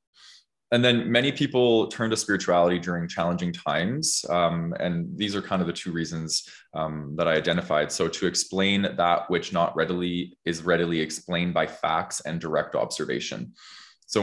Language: English